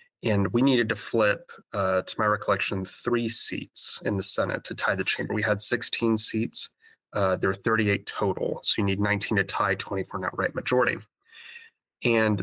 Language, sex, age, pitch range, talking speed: English, male, 30-49, 100-110 Hz, 185 wpm